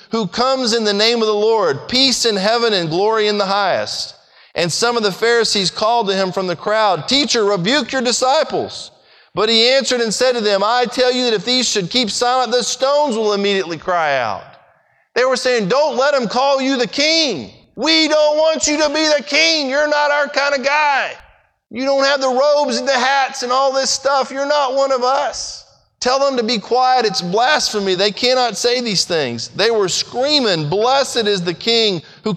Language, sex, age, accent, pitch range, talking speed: English, male, 40-59, American, 190-265 Hz, 210 wpm